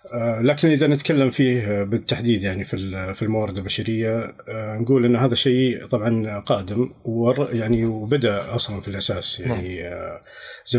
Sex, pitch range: male, 105-125 Hz